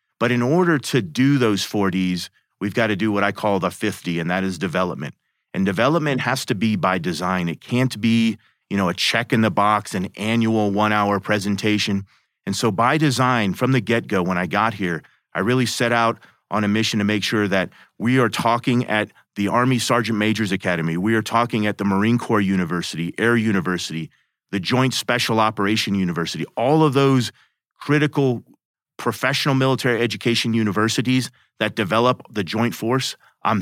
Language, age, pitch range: English, 30-49, 100-125 Hz